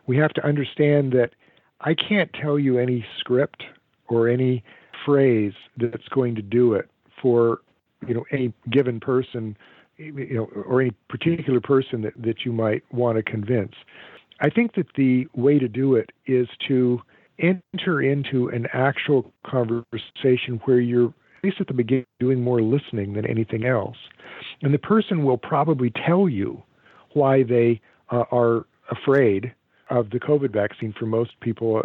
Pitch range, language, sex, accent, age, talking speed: 120-145 Hz, English, male, American, 50-69, 160 wpm